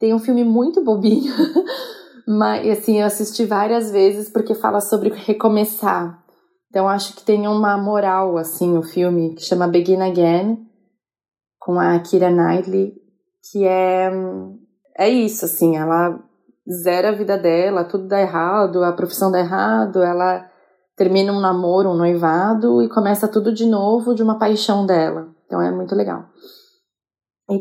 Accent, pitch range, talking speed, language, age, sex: Brazilian, 185-215 Hz, 150 wpm, Portuguese, 20-39, female